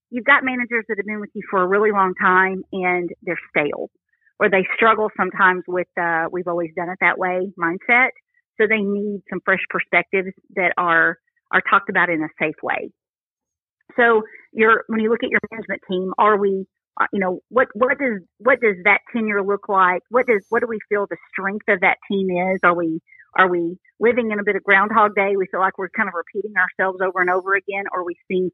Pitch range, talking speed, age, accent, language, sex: 180-220 Hz, 220 wpm, 40-59, American, English, female